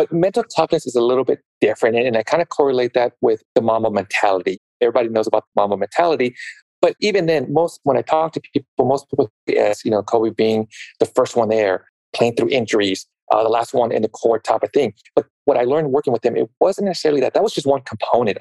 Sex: male